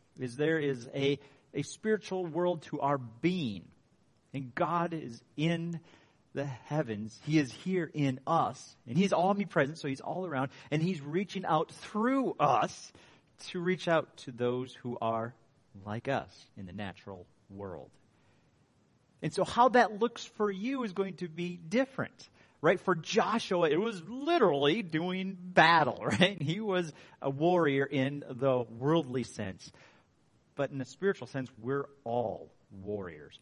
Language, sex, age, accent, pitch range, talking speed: English, male, 40-59, American, 125-175 Hz, 150 wpm